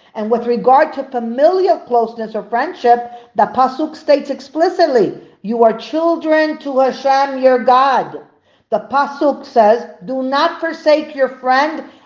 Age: 50-69